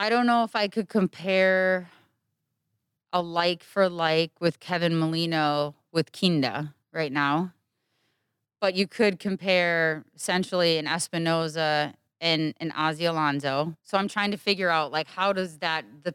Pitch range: 150-185 Hz